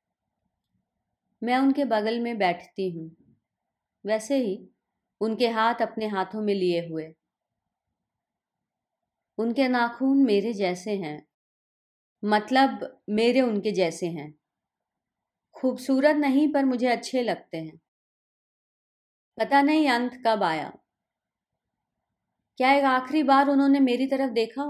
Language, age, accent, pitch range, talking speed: Hindi, 30-49, native, 200-265 Hz, 110 wpm